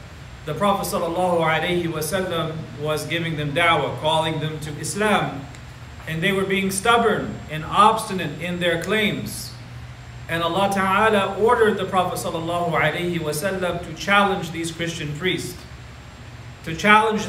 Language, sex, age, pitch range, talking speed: English, male, 40-59, 155-200 Hz, 120 wpm